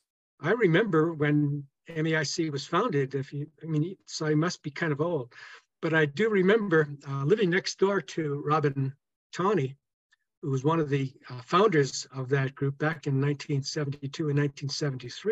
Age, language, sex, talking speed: 60-79, English, male, 160 wpm